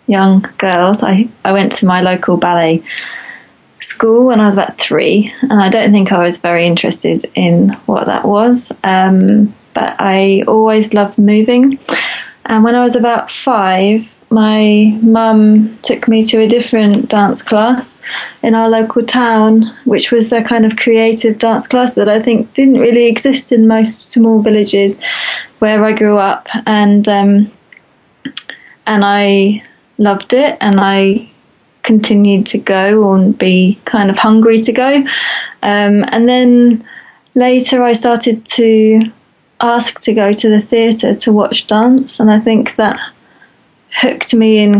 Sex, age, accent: female, 20-39, British